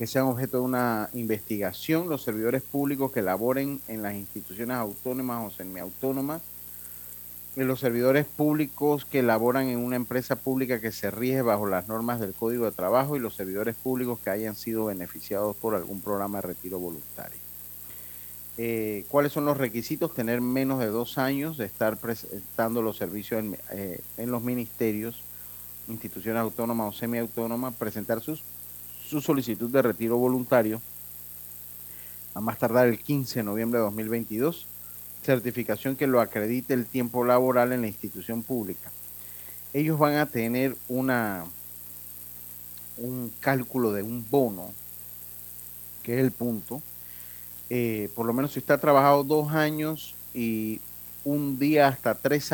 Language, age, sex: Spanish, 40-59, male